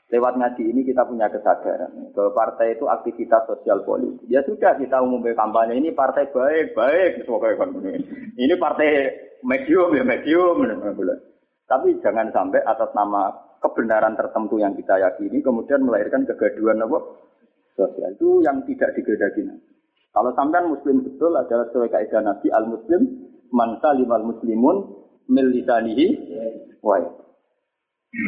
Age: 30-49